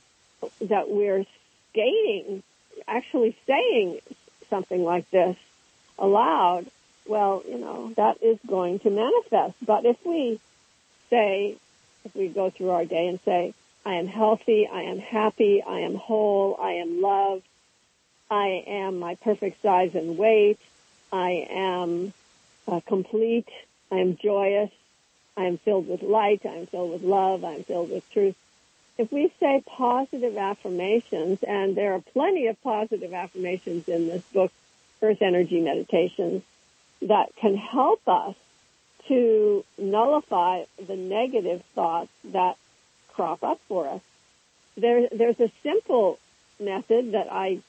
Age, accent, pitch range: 50-69, American, 185-235 Hz